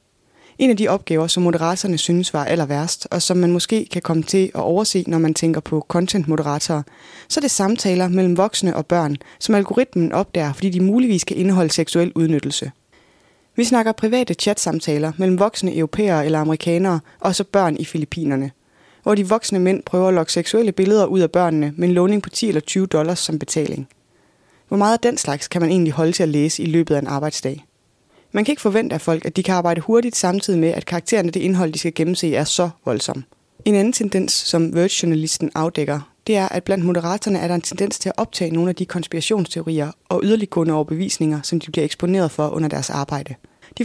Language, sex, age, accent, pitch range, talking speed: Danish, female, 20-39, native, 160-195 Hz, 205 wpm